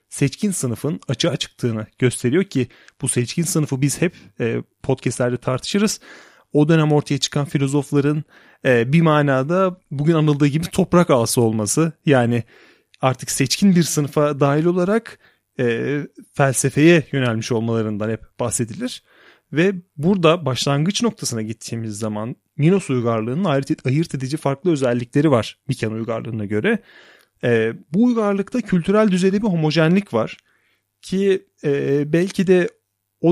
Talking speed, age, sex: 125 wpm, 30-49, male